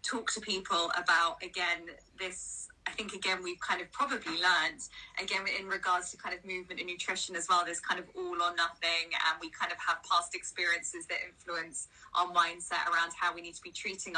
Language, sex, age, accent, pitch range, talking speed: English, female, 20-39, British, 175-200 Hz, 205 wpm